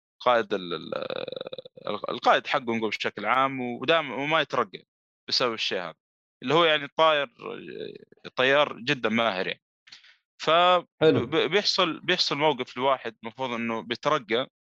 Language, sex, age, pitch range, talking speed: Arabic, male, 20-39, 110-150 Hz, 115 wpm